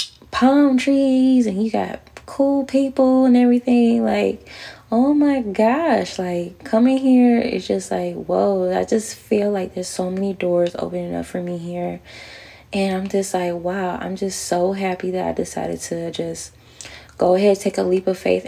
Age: 10-29